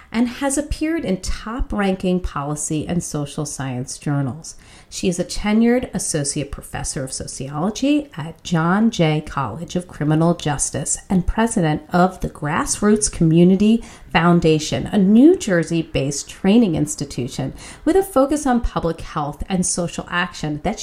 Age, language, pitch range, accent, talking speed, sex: 40-59, English, 155-260 Hz, American, 135 wpm, female